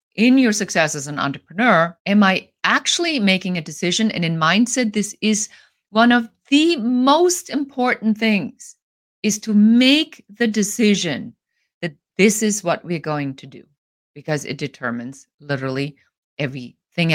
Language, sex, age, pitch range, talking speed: English, female, 50-69, 140-195 Hz, 145 wpm